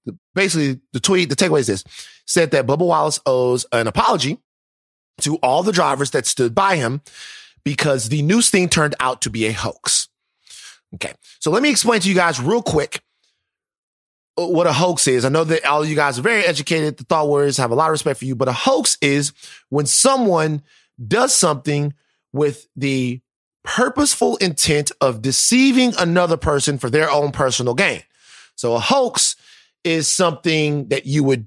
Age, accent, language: 30-49, American, English